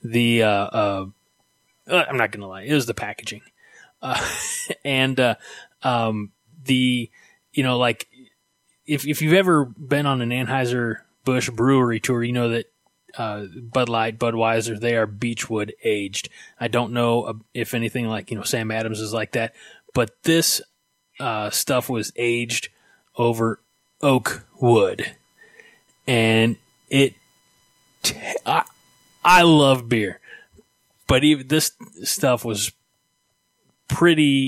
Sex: male